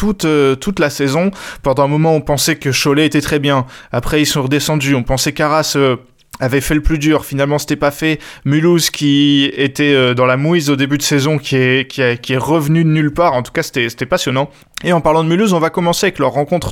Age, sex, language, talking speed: 20-39, male, French, 250 wpm